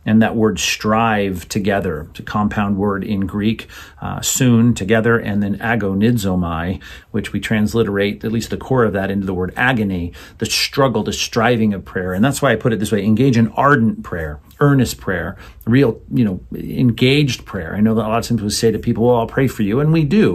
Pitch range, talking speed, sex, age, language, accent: 100-120 Hz, 215 wpm, male, 40-59, English, American